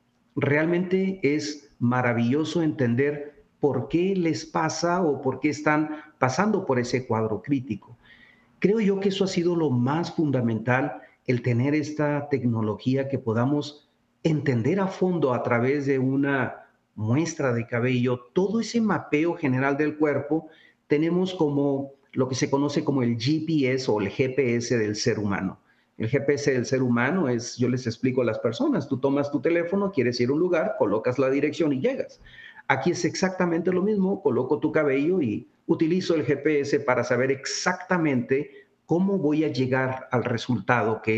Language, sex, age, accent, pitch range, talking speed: Spanish, male, 40-59, Mexican, 125-155 Hz, 160 wpm